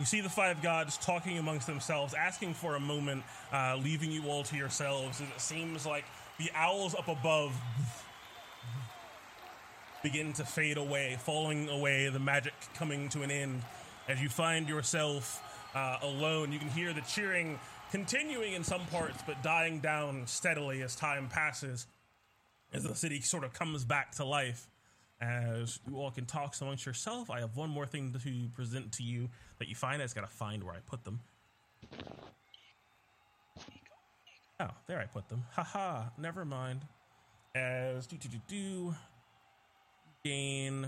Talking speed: 165 wpm